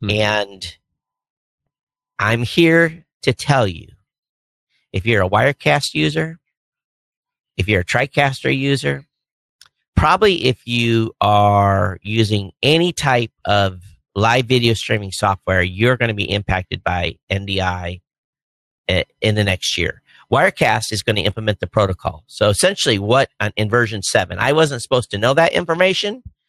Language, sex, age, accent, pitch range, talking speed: English, male, 50-69, American, 100-130 Hz, 135 wpm